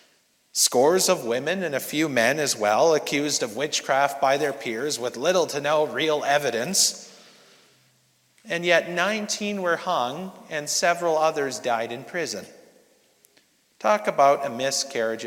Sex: male